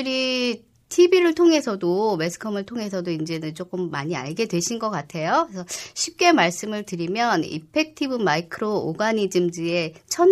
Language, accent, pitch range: Korean, native, 170-255 Hz